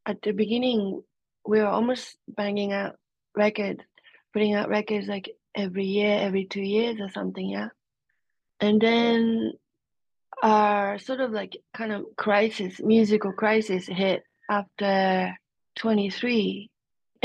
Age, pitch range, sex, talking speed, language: 30-49, 190-220 Hz, female, 120 wpm, English